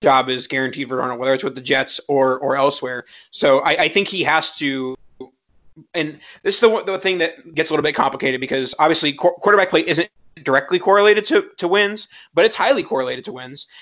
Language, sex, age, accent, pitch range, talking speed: English, male, 30-49, American, 135-165 Hz, 210 wpm